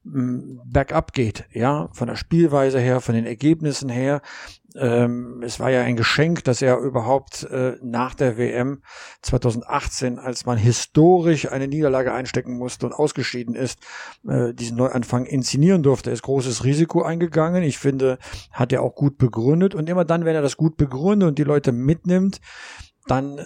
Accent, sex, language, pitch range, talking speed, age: German, male, German, 120-145 Hz, 170 wpm, 50-69